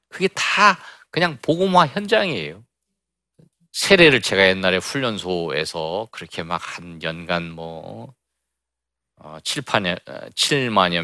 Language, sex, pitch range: Korean, male, 85-140 Hz